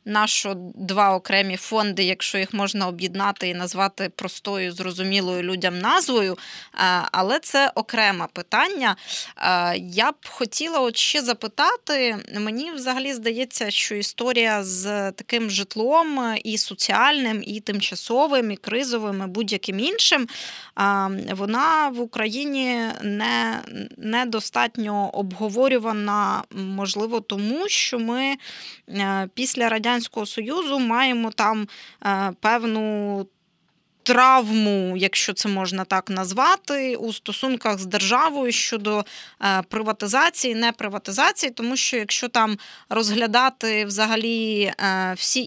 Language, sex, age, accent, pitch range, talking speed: Ukrainian, female, 20-39, native, 195-245 Hz, 100 wpm